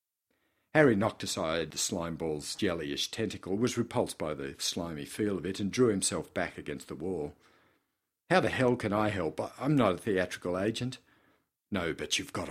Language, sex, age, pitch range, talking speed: English, male, 50-69, 85-125 Hz, 180 wpm